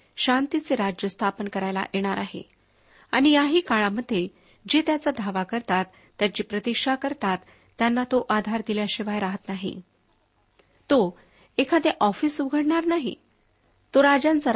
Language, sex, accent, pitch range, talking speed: Marathi, female, native, 200-270 Hz, 120 wpm